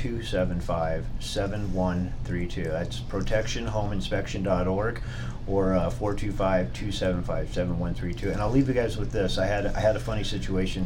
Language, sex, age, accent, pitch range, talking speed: English, male, 40-59, American, 105-130 Hz, 150 wpm